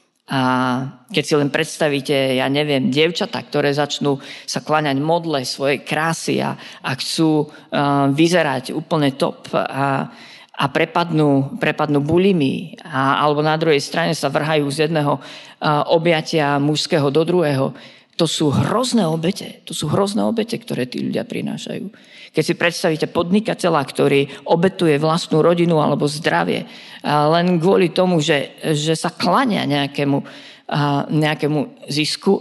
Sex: female